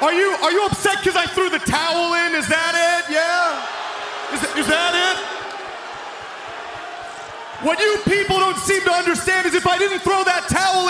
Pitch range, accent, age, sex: 300-380 Hz, American, 30-49, male